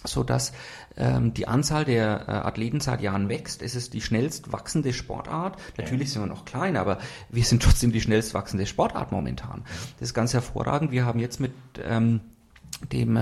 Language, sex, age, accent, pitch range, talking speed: German, male, 40-59, German, 110-135 Hz, 185 wpm